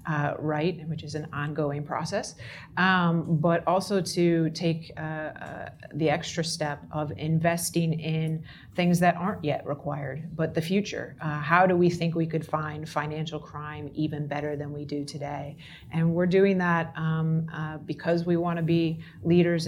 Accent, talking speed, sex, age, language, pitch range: American, 170 wpm, female, 30-49, English, 150-170 Hz